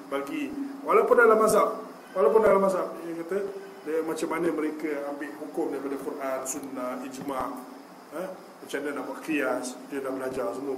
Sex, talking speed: male, 160 wpm